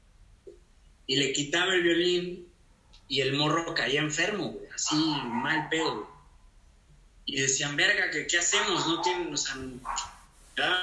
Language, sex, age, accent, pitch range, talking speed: Spanish, male, 30-49, Mexican, 115-155 Hz, 135 wpm